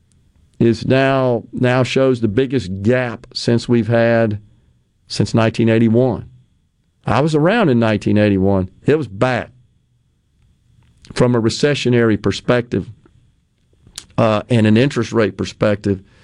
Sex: male